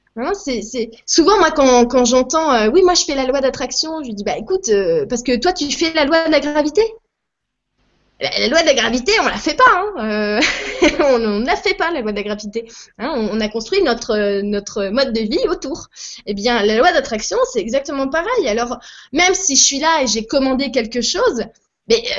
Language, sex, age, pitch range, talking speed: French, female, 20-39, 230-305 Hz, 230 wpm